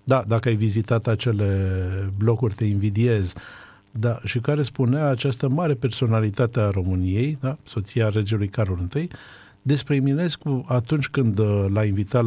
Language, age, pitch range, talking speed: Romanian, 50-69, 100-125 Hz, 135 wpm